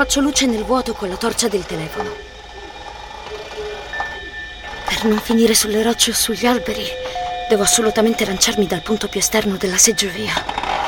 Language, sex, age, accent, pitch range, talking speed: Italian, female, 20-39, native, 205-275 Hz, 145 wpm